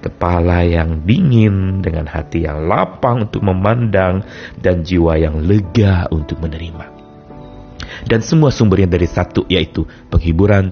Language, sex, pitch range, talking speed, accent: Indonesian, male, 85-115 Hz, 125 wpm, native